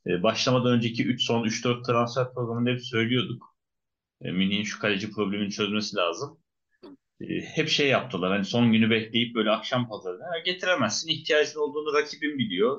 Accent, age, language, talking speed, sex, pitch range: native, 30-49, Turkish, 140 wpm, male, 100-140 Hz